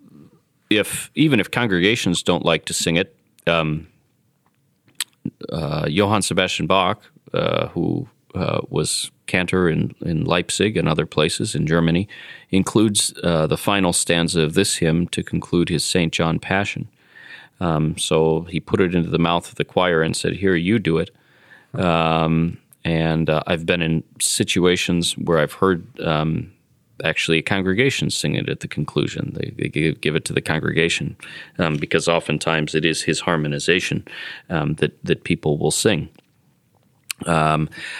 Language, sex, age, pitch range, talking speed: English, male, 30-49, 80-105 Hz, 155 wpm